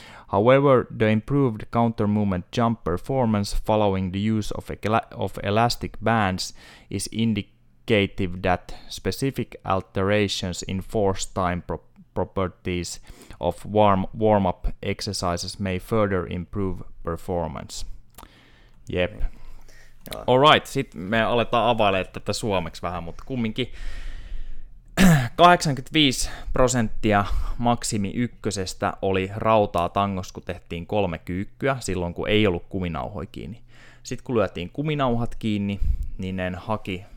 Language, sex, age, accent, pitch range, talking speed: Finnish, male, 20-39, native, 90-115 Hz, 110 wpm